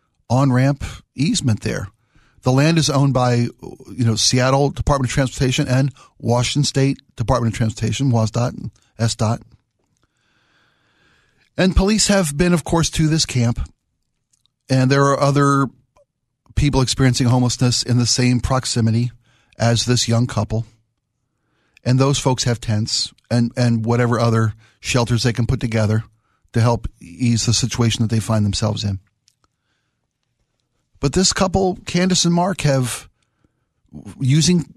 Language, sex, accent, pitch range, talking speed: English, male, American, 115-140 Hz, 135 wpm